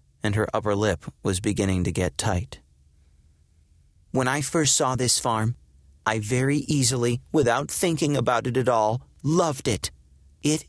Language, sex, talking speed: English, male, 150 wpm